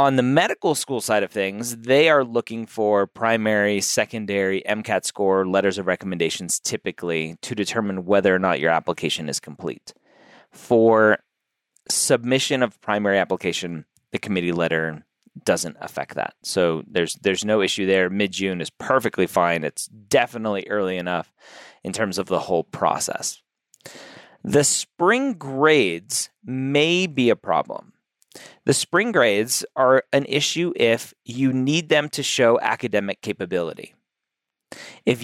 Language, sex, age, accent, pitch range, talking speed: English, male, 30-49, American, 100-130 Hz, 140 wpm